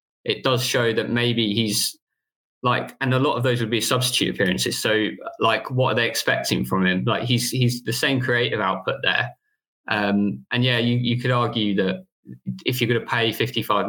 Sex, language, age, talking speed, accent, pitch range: male, English, 20-39, 200 wpm, British, 95-120 Hz